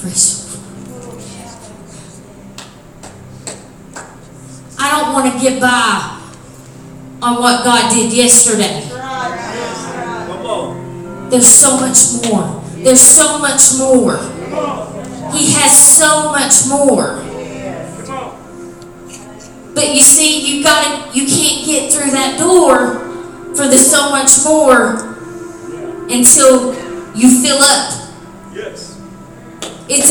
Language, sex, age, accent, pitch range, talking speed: English, female, 30-49, American, 245-305 Hz, 90 wpm